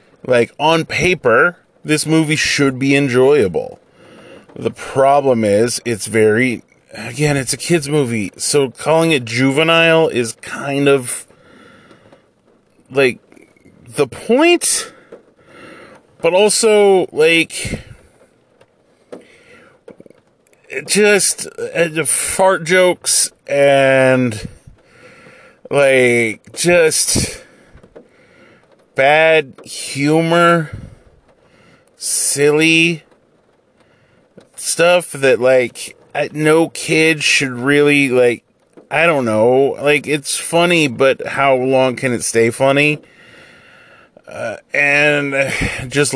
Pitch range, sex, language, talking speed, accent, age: 125-160 Hz, male, English, 85 wpm, American, 30-49